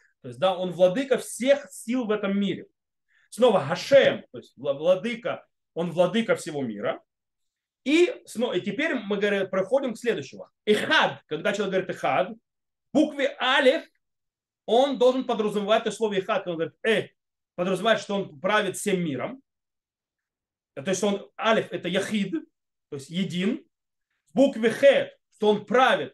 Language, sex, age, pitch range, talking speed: Russian, male, 30-49, 170-230 Hz, 150 wpm